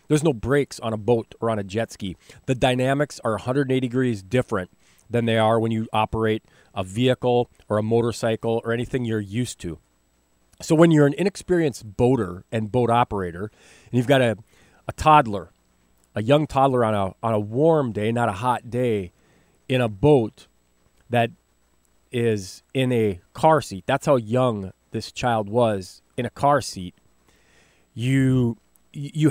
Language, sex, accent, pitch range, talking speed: English, male, American, 105-130 Hz, 165 wpm